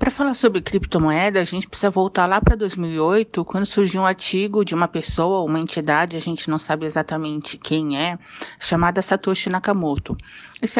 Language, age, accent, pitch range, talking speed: Portuguese, 50-69, Brazilian, 175-230 Hz, 170 wpm